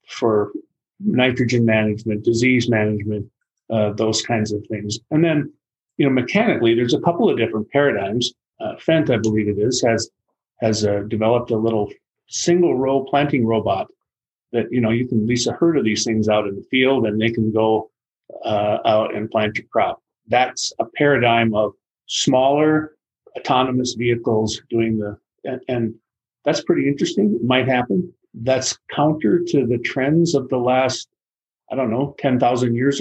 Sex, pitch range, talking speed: male, 110-130 Hz, 165 wpm